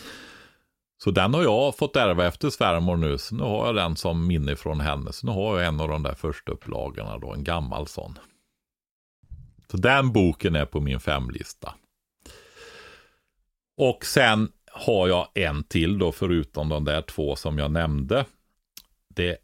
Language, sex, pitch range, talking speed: Swedish, male, 80-105 Hz, 165 wpm